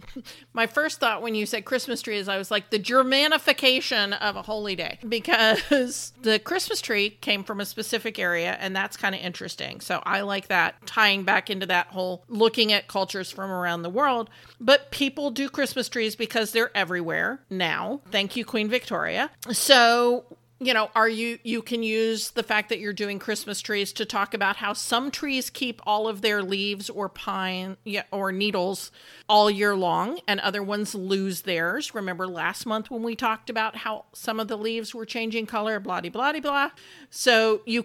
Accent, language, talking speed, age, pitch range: American, English, 195 wpm, 40-59, 200-235 Hz